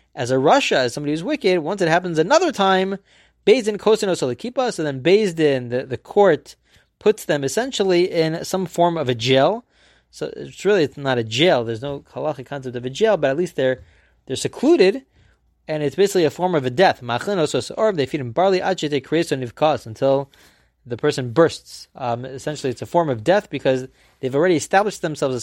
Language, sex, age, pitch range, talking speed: English, male, 20-39, 130-190 Hz, 180 wpm